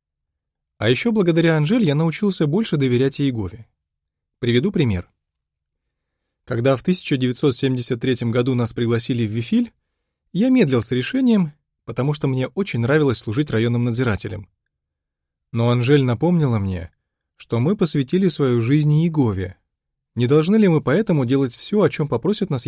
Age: 20-39